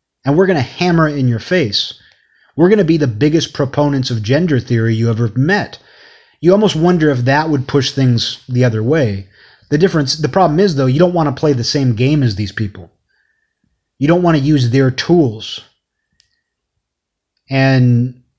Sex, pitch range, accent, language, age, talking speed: male, 120-155 Hz, American, English, 30-49, 190 wpm